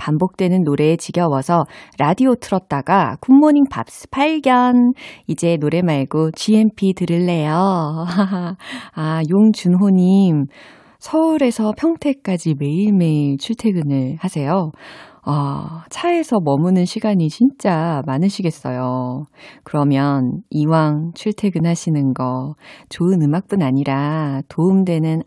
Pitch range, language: 145-220 Hz, Korean